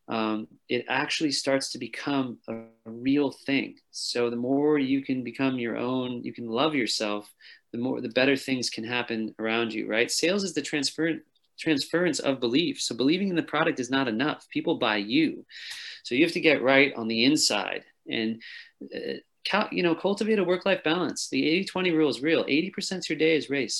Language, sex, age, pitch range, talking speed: English, male, 40-59, 115-155 Hz, 195 wpm